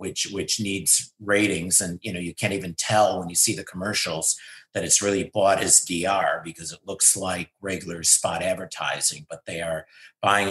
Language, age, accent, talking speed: English, 50-69, American, 190 wpm